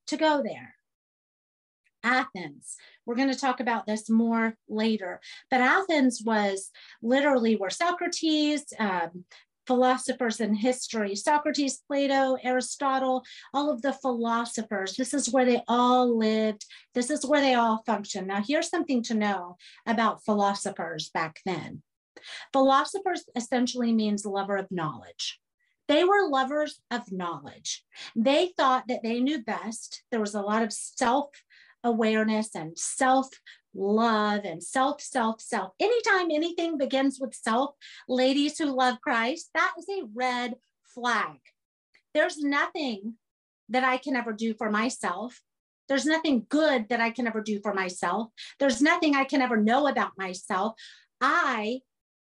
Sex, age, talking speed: female, 40-59, 140 wpm